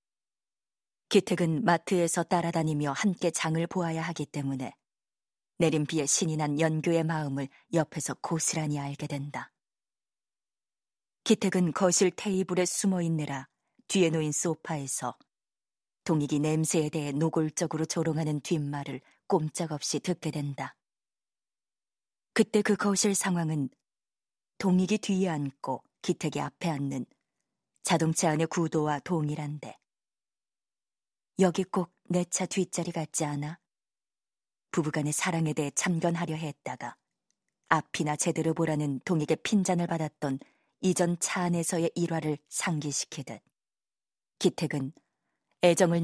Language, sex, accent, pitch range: Korean, female, native, 150-175 Hz